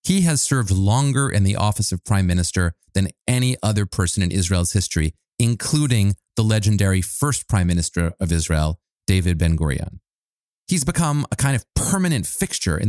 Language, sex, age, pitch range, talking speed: English, male, 30-49, 90-135 Hz, 165 wpm